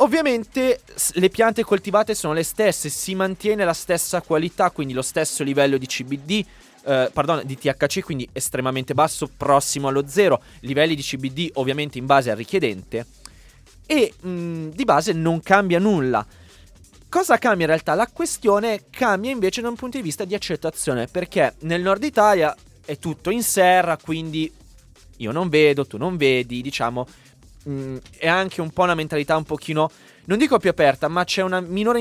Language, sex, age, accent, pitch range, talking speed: Italian, male, 20-39, native, 135-190 Hz, 170 wpm